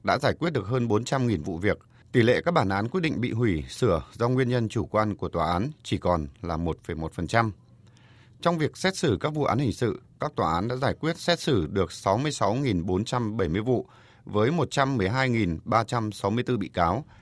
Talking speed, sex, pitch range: 190 wpm, male, 105-135 Hz